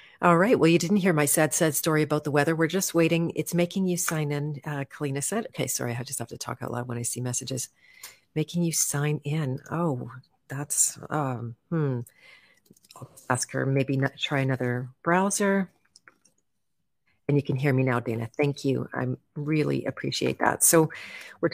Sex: female